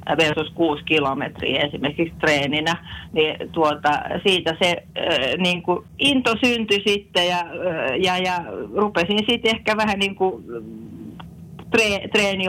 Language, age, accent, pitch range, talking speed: Finnish, 40-59, native, 160-200 Hz, 115 wpm